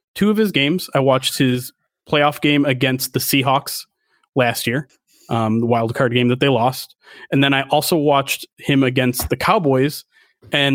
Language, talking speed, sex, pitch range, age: English, 180 wpm, male, 130-160 Hz, 30-49